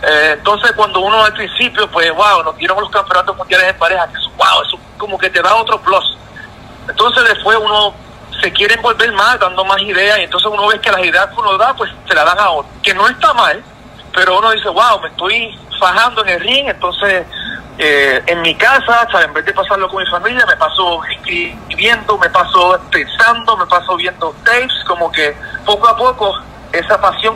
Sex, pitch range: male, 180-225 Hz